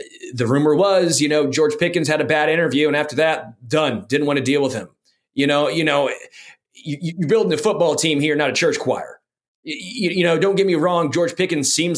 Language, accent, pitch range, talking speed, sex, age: English, American, 135-170 Hz, 230 wpm, male, 30-49